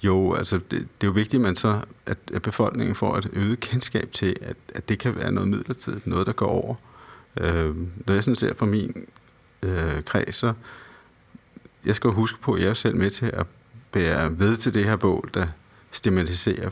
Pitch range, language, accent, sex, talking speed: 95-120 Hz, Danish, native, male, 210 wpm